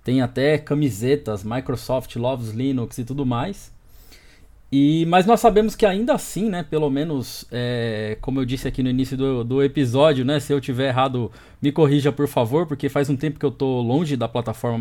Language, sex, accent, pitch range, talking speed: Portuguese, male, Brazilian, 130-175 Hz, 185 wpm